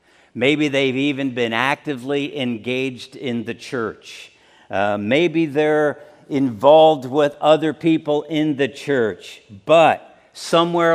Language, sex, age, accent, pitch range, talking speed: English, male, 50-69, American, 130-155 Hz, 115 wpm